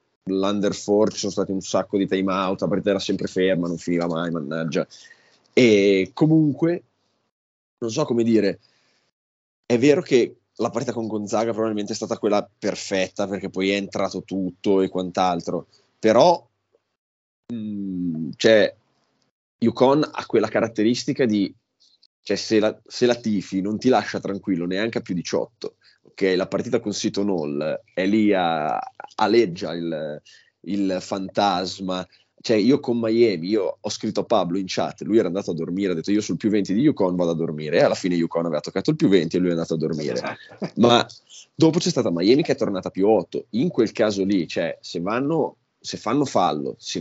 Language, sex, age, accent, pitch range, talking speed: Italian, male, 20-39, native, 90-110 Hz, 180 wpm